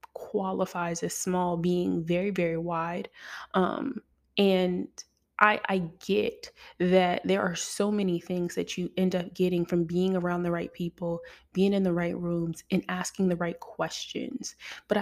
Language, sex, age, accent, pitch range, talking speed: English, female, 20-39, American, 180-205 Hz, 160 wpm